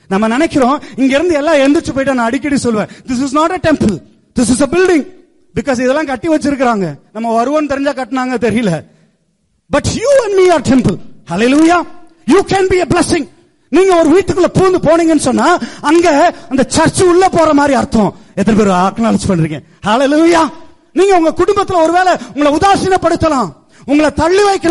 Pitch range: 245-340 Hz